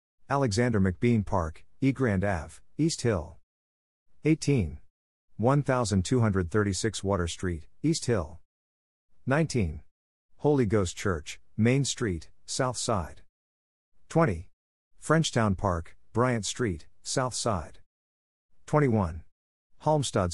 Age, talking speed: 50-69, 90 wpm